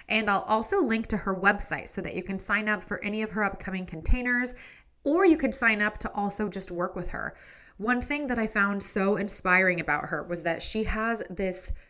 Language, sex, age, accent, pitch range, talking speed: English, female, 20-39, American, 175-215 Hz, 220 wpm